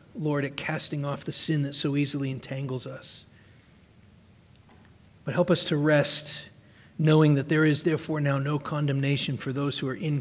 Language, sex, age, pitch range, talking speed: English, male, 40-59, 125-155 Hz, 170 wpm